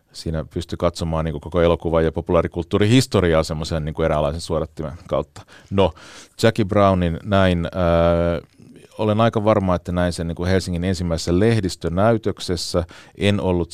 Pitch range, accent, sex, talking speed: 80-100 Hz, native, male, 130 wpm